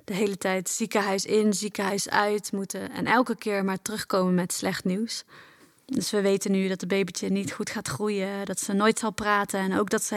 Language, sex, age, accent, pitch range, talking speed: Dutch, female, 20-39, Dutch, 195-220 Hz, 210 wpm